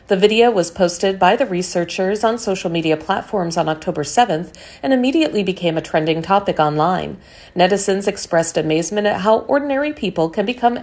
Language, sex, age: Chinese, female, 40-59